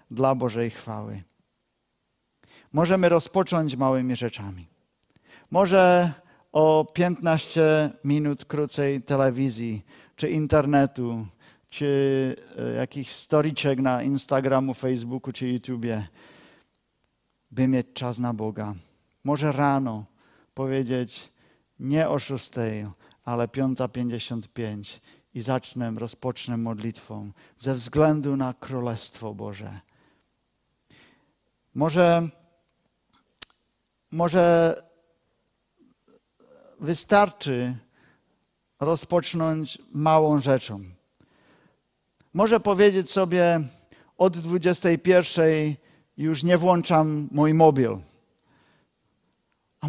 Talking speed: 75 wpm